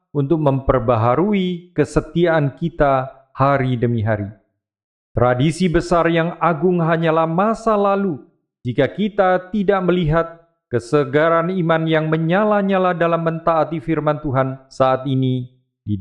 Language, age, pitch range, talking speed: Indonesian, 40-59, 125-185 Hz, 110 wpm